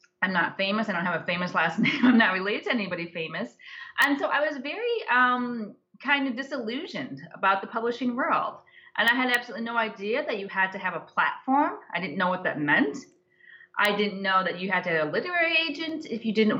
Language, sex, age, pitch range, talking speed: English, female, 30-49, 195-250 Hz, 225 wpm